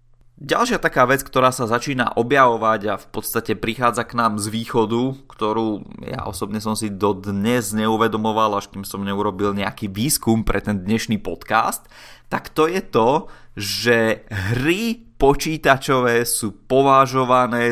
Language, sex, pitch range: Czech, male, 105-130 Hz